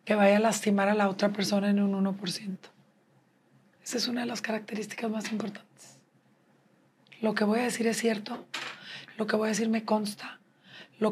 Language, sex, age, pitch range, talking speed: English, female, 40-59, 210-245 Hz, 185 wpm